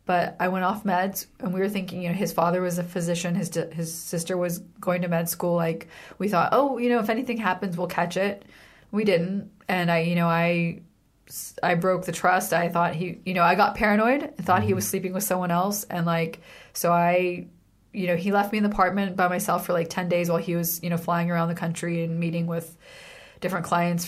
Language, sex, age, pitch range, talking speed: English, female, 30-49, 170-185 Hz, 235 wpm